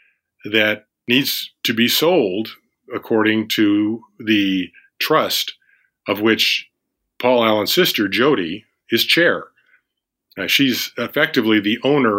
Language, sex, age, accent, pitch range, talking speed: English, male, 50-69, American, 100-115 Hz, 105 wpm